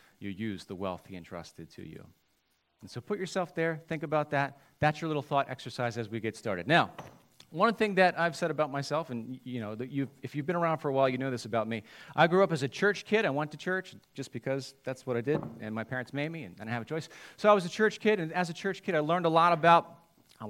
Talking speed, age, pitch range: 280 wpm, 40-59, 125-175 Hz